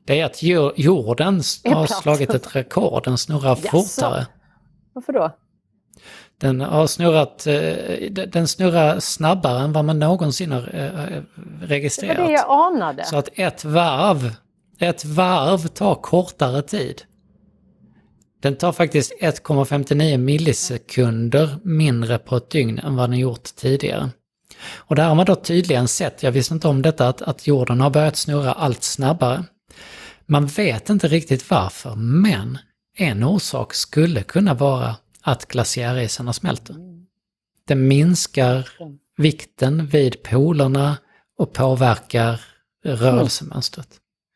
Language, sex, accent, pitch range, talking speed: Swedish, male, native, 125-160 Hz, 125 wpm